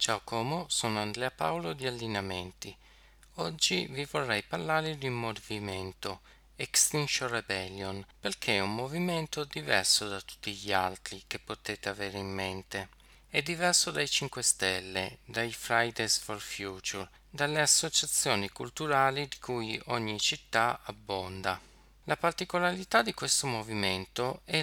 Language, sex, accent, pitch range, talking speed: Italian, male, native, 100-140 Hz, 130 wpm